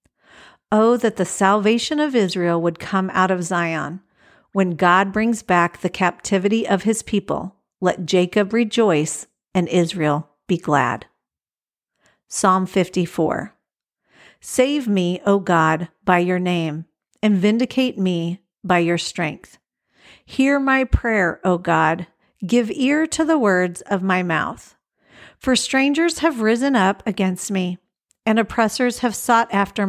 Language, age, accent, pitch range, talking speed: English, 50-69, American, 180-230 Hz, 135 wpm